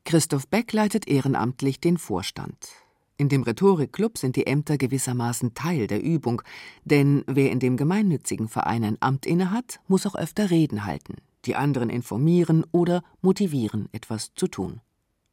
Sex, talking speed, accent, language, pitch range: female, 150 wpm, German, German, 120-175 Hz